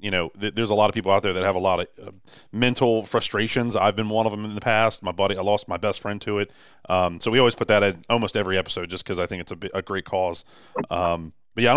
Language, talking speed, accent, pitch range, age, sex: English, 305 wpm, American, 105-130 Hz, 30-49, male